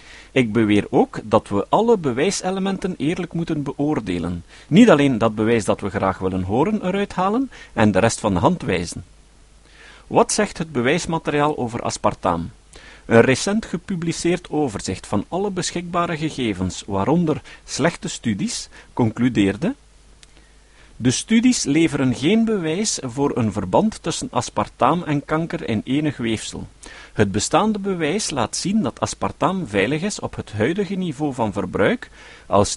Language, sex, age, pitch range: Dutch, male, 50-69, 105-180 Hz